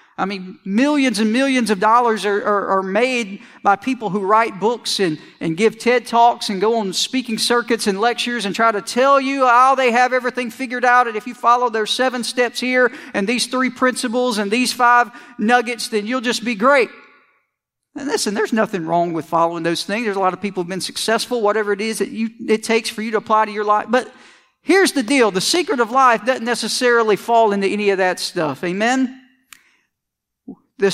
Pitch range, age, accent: 215-270 Hz, 50-69, American